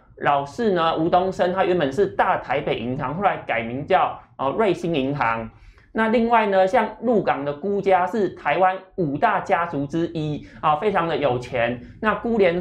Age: 30-49